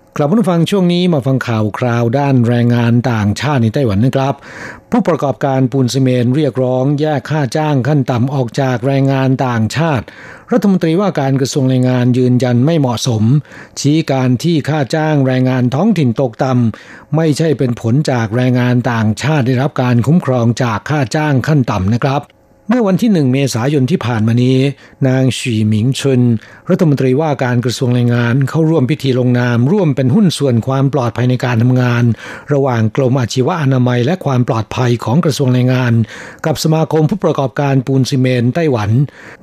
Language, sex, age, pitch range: Thai, male, 60-79, 125-150 Hz